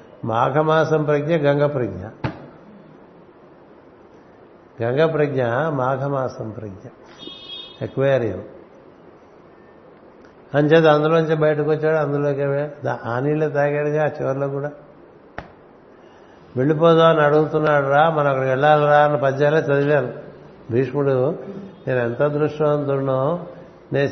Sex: male